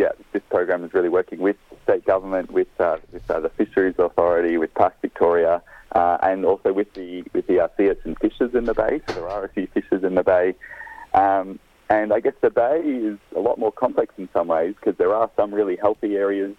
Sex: male